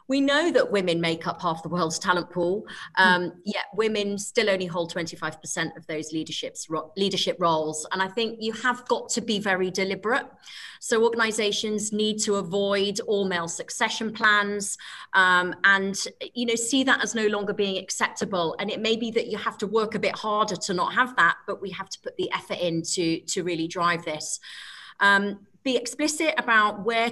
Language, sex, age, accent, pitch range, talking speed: English, female, 30-49, British, 175-220 Hz, 190 wpm